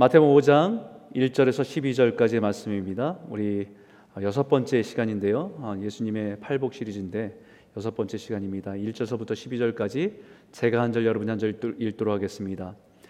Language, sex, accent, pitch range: Korean, male, native, 100-140 Hz